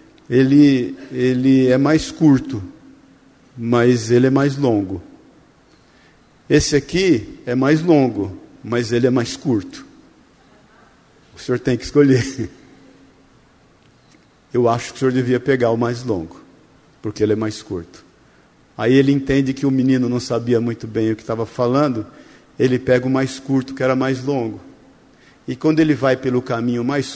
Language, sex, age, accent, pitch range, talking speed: Portuguese, male, 50-69, Brazilian, 125-160 Hz, 155 wpm